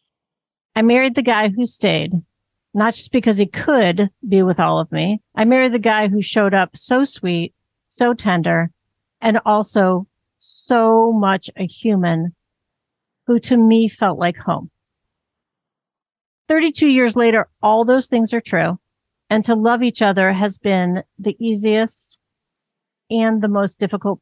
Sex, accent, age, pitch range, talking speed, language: female, American, 50-69, 180-230 Hz, 150 wpm, English